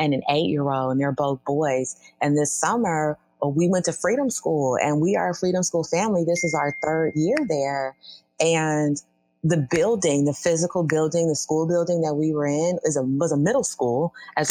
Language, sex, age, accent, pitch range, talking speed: English, female, 30-49, American, 145-185 Hz, 200 wpm